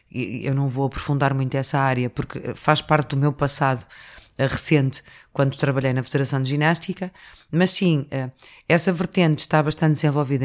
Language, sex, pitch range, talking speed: Portuguese, female, 140-170 Hz, 155 wpm